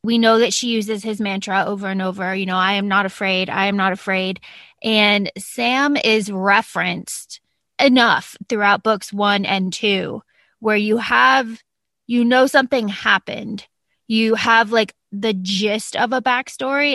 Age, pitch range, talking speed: 20-39, 205-240 Hz, 160 wpm